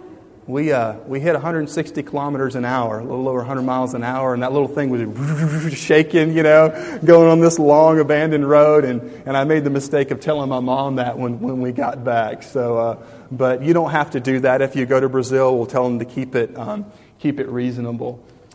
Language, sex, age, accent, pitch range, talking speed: English, male, 30-49, American, 120-150 Hz, 225 wpm